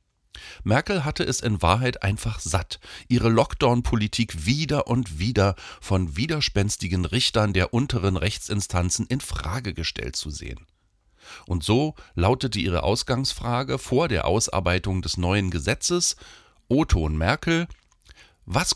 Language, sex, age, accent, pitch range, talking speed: German, male, 40-59, German, 85-120 Hz, 120 wpm